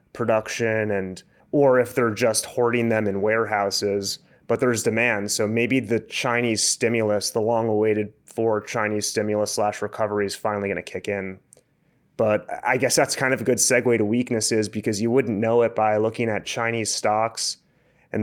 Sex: male